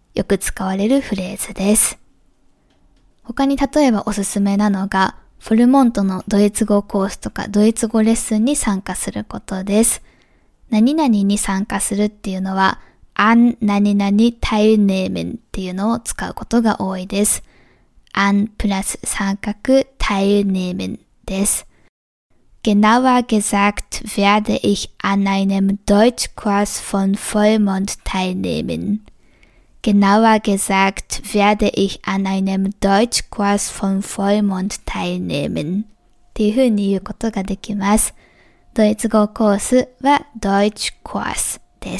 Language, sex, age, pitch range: Japanese, female, 20-39, 195-220 Hz